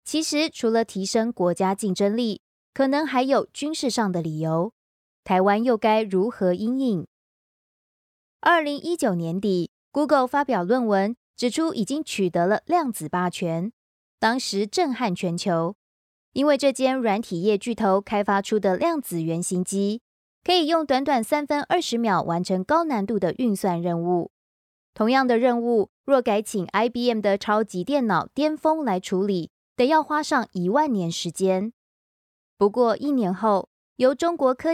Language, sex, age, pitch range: Chinese, female, 20-39, 190-275 Hz